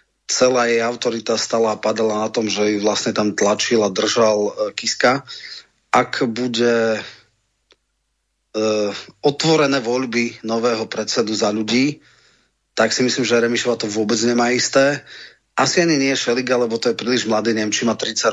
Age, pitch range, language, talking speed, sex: 30-49, 110-125 Hz, Slovak, 155 wpm, male